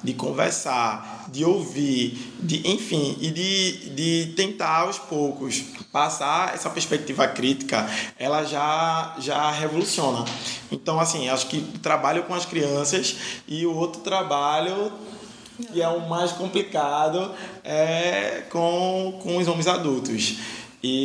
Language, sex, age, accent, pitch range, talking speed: Portuguese, male, 20-39, Brazilian, 140-175 Hz, 130 wpm